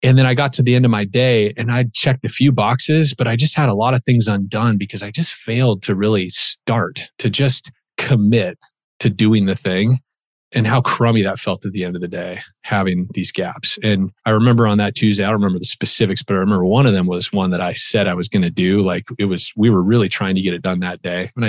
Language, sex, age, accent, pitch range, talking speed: English, male, 30-49, American, 100-125 Hz, 265 wpm